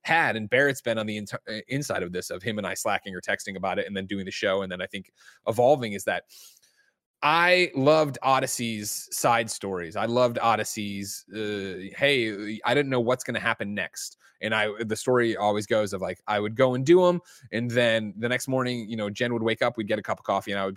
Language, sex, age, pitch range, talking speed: English, male, 20-39, 100-130 Hz, 240 wpm